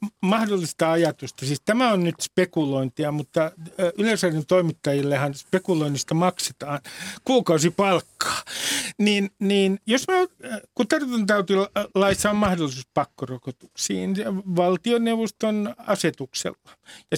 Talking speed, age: 85 wpm, 50-69